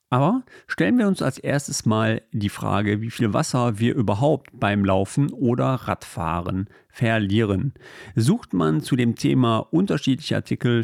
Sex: male